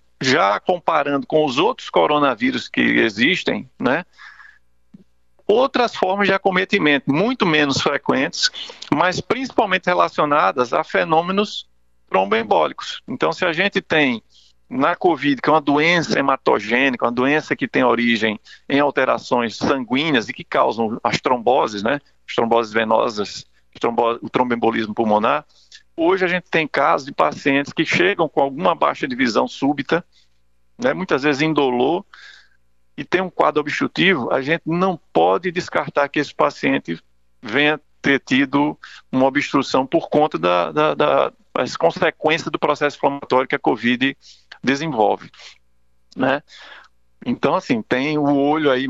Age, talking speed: 50-69, 140 wpm